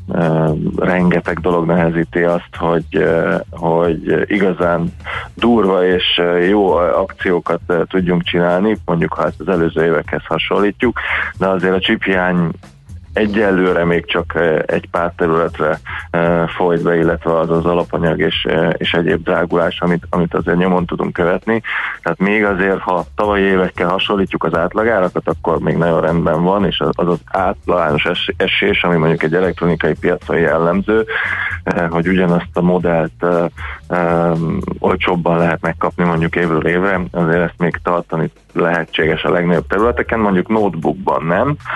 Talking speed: 130 wpm